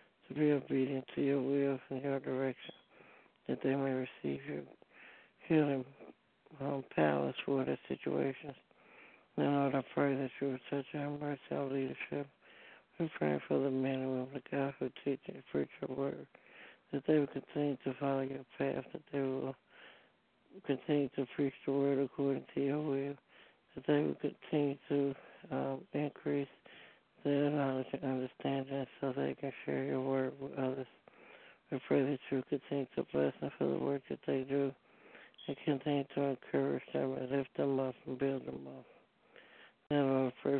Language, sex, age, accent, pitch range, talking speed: English, male, 60-79, American, 130-140 Hz, 170 wpm